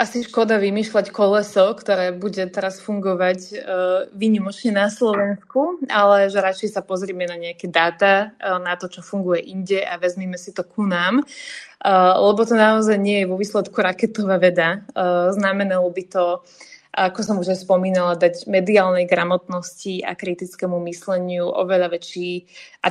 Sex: female